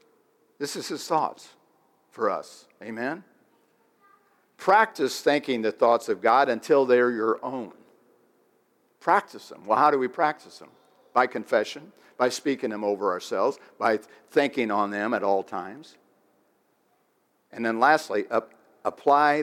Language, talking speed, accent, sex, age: English, 135 wpm, American, male, 60-79